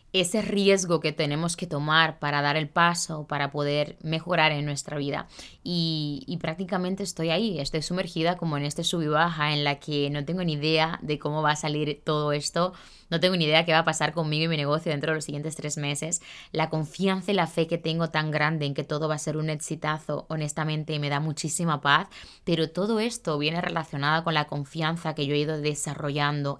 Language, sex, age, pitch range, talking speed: Spanish, female, 20-39, 150-170 Hz, 220 wpm